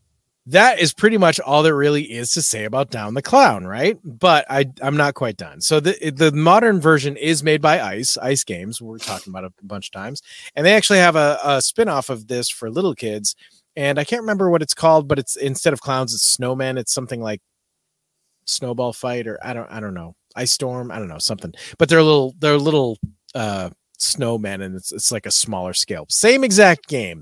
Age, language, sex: 30-49, English, male